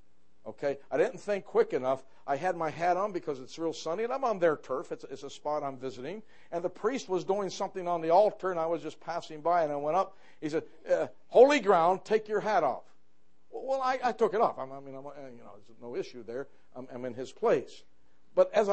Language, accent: English, American